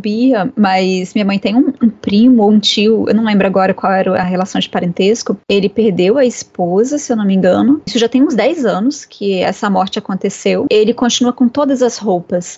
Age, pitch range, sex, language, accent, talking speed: 10-29, 200-245 Hz, female, Portuguese, Brazilian, 215 wpm